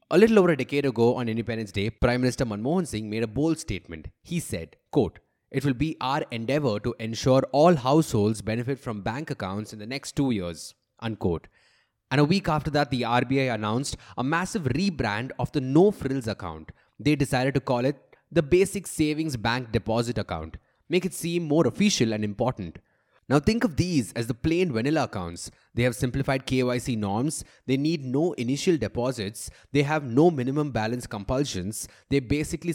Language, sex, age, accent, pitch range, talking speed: English, male, 20-39, Indian, 110-150 Hz, 180 wpm